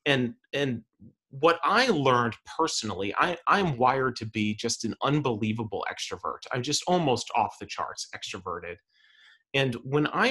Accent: American